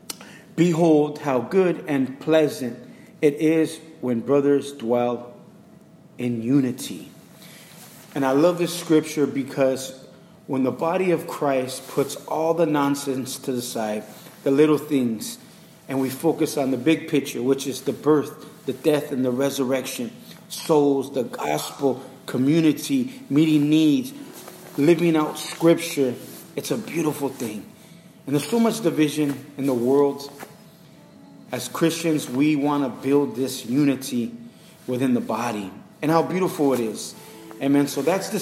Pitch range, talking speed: 135-165 Hz, 140 wpm